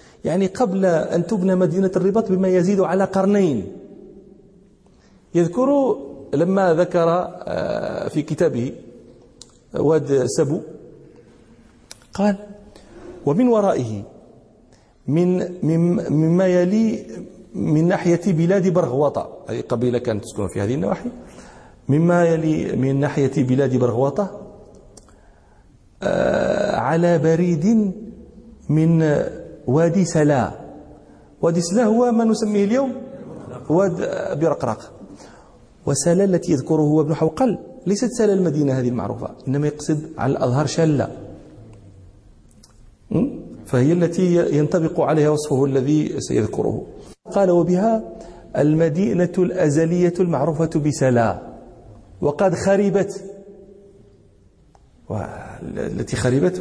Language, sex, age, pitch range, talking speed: Danish, male, 40-59, 135-190 Hz, 90 wpm